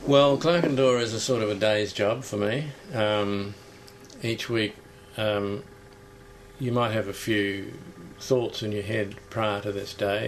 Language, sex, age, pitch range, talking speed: English, male, 50-69, 100-110 Hz, 175 wpm